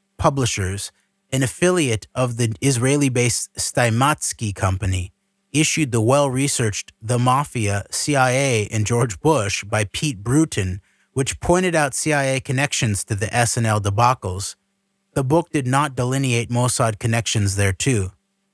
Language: English